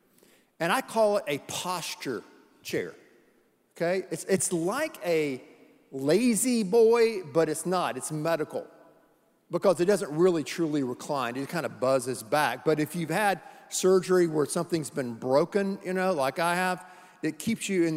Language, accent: English, American